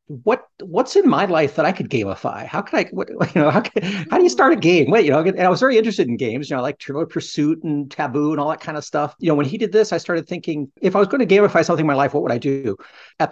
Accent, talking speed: American, 315 wpm